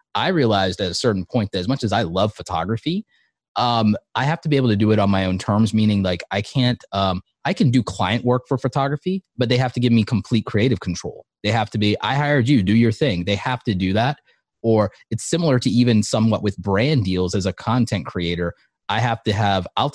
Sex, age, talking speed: male, 30-49, 240 wpm